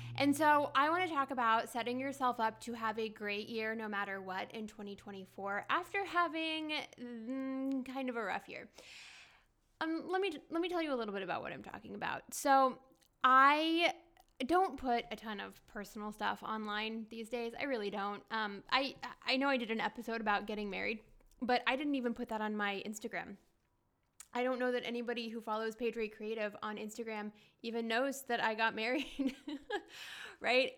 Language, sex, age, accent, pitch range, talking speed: English, female, 10-29, American, 215-270 Hz, 185 wpm